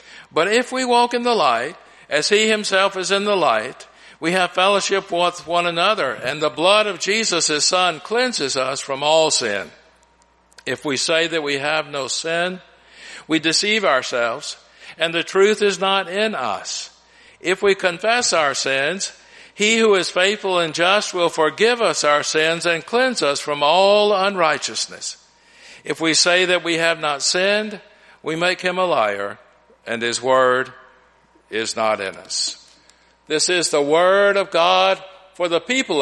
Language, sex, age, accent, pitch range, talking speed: English, male, 60-79, American, 140-195 Hz, 165 wpm